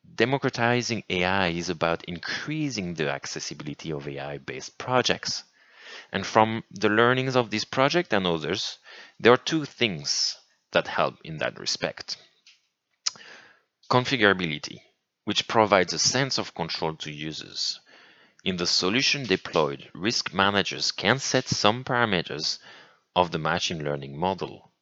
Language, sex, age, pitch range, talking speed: English, male, 30-49, 85-120 Hz, 125 wpm